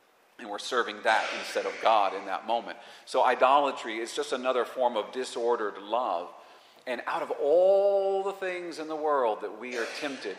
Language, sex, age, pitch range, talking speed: English, male, 40-59, 115-145 Hz, 185 wpm